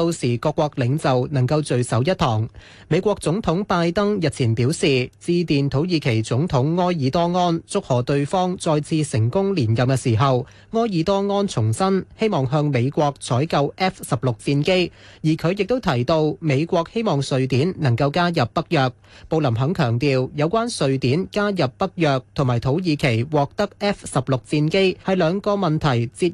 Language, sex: Chinese, male